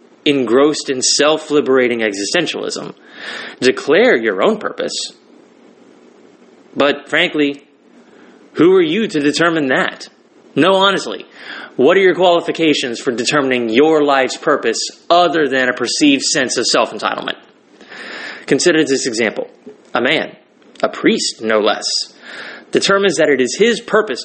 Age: 20-39